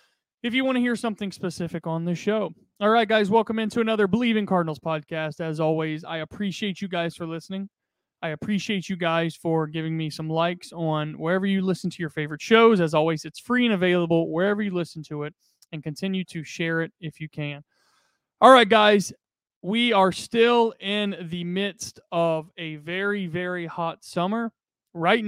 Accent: American